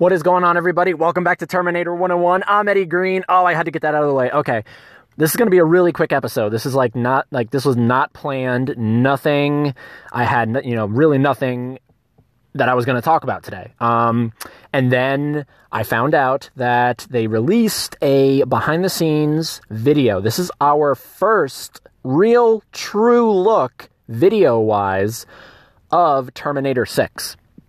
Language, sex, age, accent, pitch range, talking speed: English, male, 20-39, American, 120-160 Hz, 180 wpm